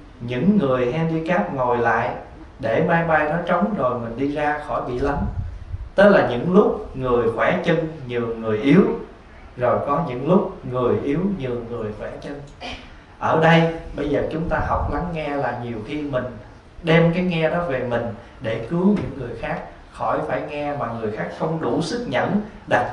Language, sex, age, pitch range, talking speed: Vietnamese, male, 20-39, 115-165 Hz, 190 wpm